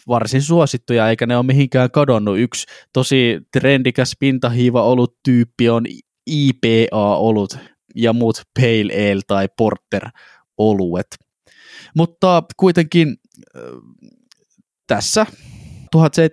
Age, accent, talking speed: 20-39, native, 90 wpm